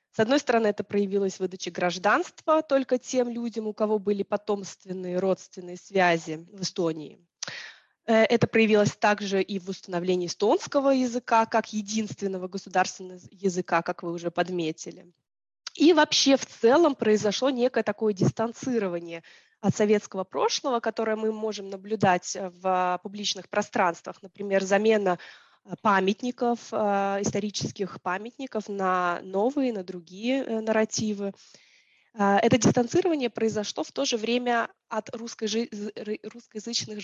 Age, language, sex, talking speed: 20-39, Russian, female, 115 wpm